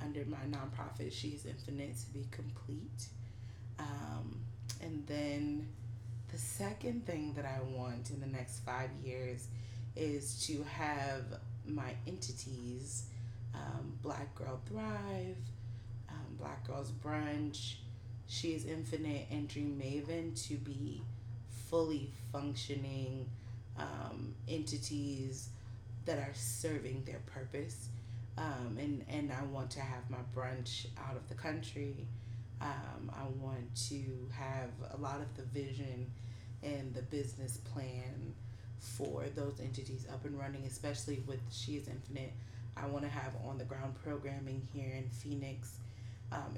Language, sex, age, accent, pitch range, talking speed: English, female, 30-49, American, 115-135 Hz, 130 wpm